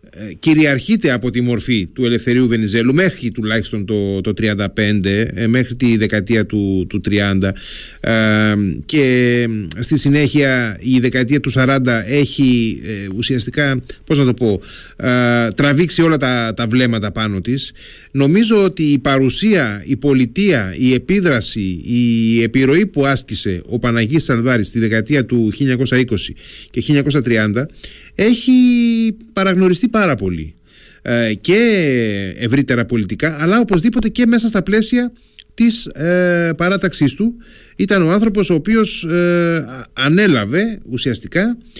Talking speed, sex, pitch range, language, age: 125 wpm, male, 110-160 Hz, Greek, 30-49